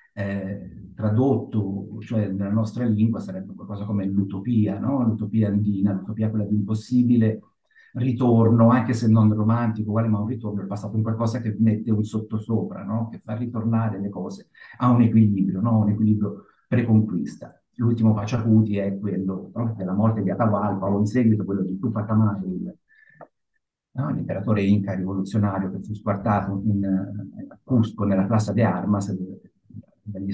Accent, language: native, Italian